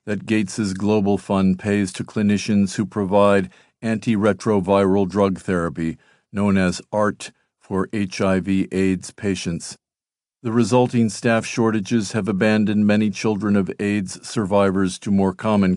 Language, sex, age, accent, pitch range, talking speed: English, male, 50-69, American, 95-110 Hz, 120 wpm